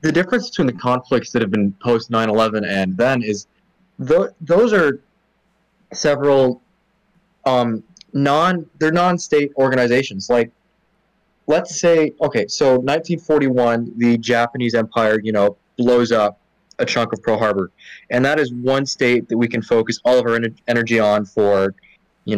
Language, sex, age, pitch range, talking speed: English, male, 20-39, 115-155 Hz, 150 wpm